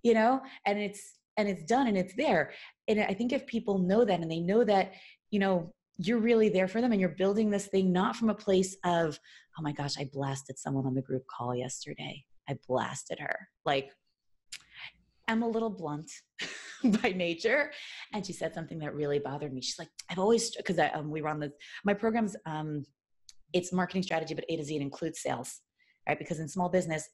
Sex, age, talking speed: female, 20-39, 205 wpm